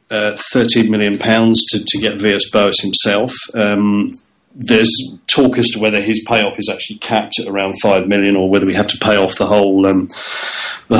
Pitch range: 105-120 Hz